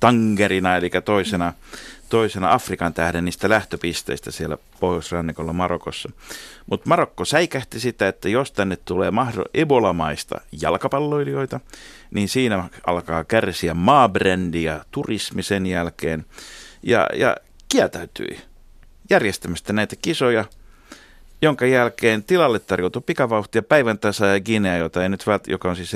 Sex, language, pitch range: male, Finnish, 85-115 Hz